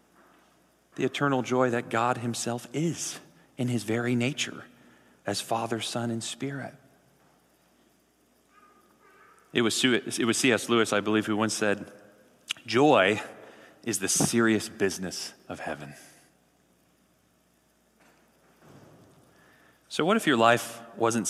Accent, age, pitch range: American, 40-59, 100-135 Hz